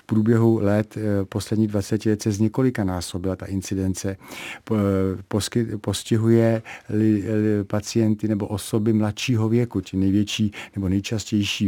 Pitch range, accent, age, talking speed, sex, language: 100-115 Hz, native, 50-69, 125 wpm, male, Czech